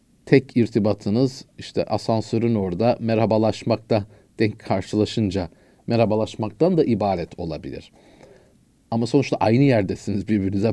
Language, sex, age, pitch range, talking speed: Turkish, male, 40-59, 105-130 Hz, 95 wpm